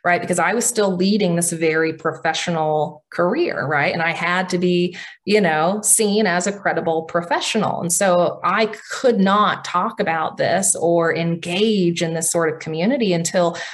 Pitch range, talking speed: 160-185 Hz, 170 wpm